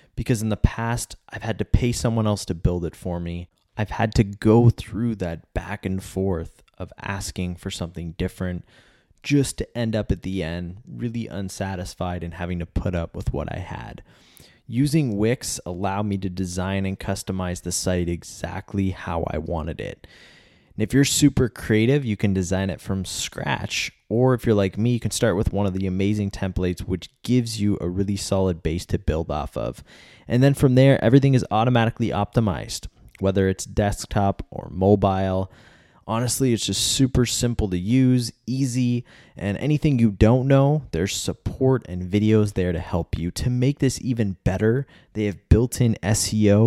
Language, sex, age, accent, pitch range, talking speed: English, male, 20-39, American, 95-115 Hz, 180 wpm